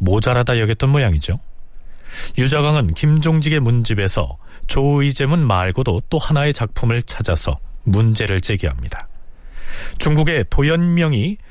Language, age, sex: Korean, 40-59, male